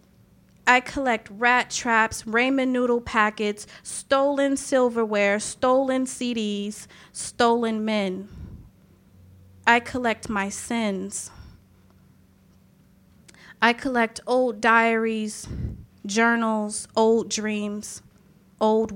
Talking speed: 80 wpm